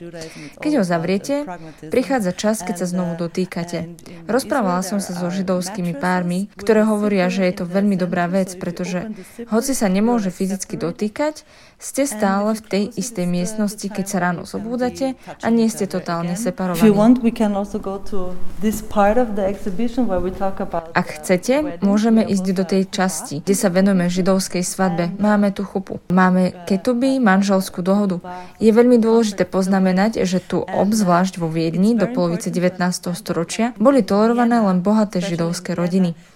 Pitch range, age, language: 180-215 Hz, 20-39, Slovak